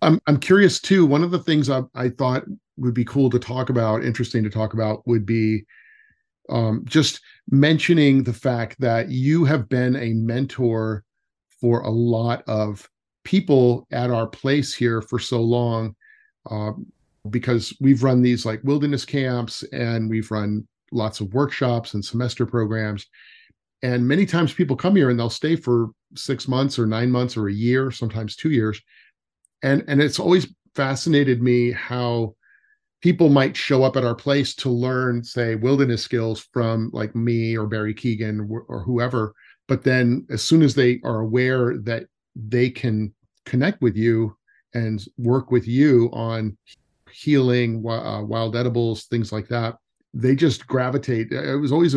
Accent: American